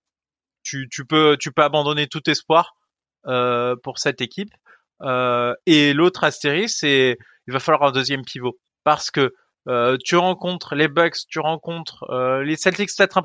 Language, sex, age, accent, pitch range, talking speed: French, male, 20-39, French, 135-175 Hz, 170 wpm